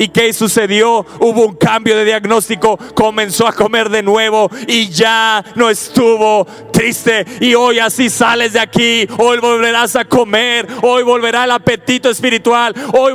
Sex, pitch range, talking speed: male, 230-305 Hz, 155 wpm